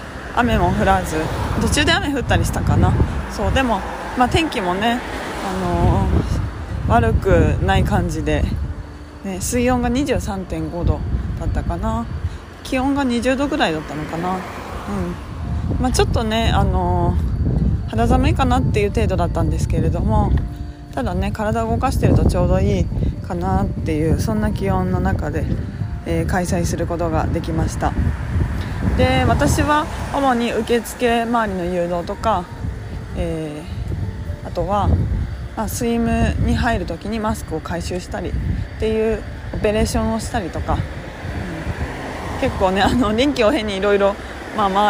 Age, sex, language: 20-39, female, Japanese